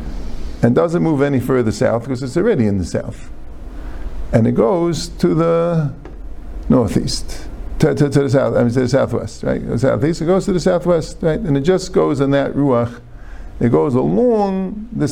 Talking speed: 190 wpm